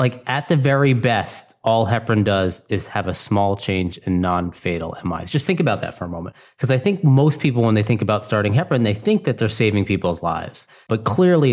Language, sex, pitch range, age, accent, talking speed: English, male, 95-125 Hz, 30-49, American, 225 wpm